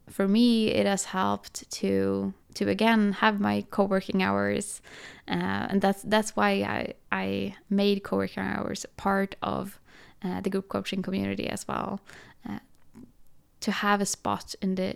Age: 20-39